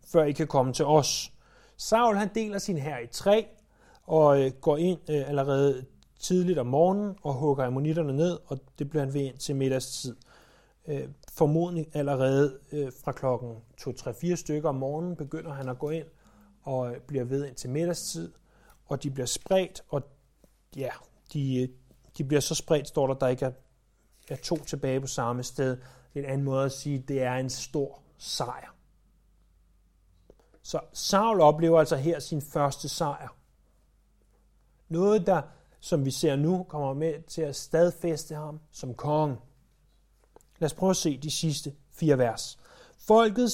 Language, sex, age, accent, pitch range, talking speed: Danish, male, 30-49, native, 130-165 Hz, 165 wpm